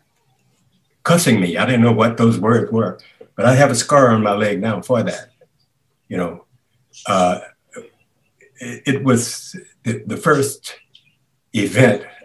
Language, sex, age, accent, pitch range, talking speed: English, male, 60-79, American, 115-135 Hz, 135 wpm